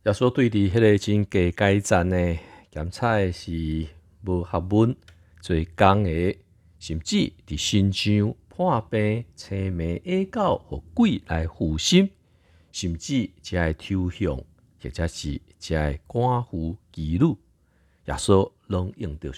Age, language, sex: 50-69, Chinese, male